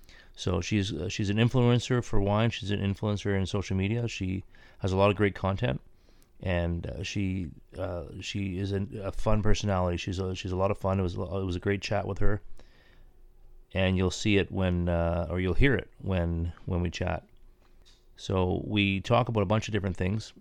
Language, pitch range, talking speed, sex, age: English, 90-100 Hz, 210 wpm, male, 30-49